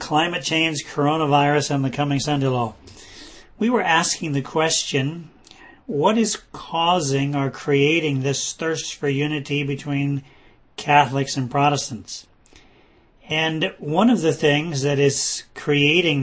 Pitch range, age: 135-160 Hz, 40-59